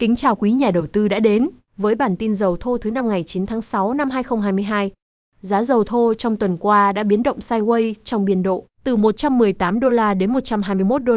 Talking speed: 220 wpm